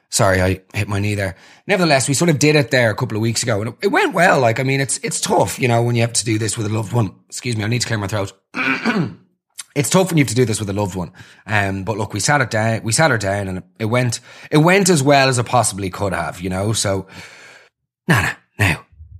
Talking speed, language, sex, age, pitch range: 280 wpm, English, male, 30-49, 105-160 Hz